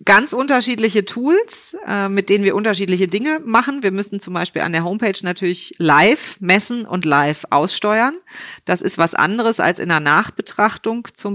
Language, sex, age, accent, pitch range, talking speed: German, female, 40-59, German, 160-200 Hz, 165 wpm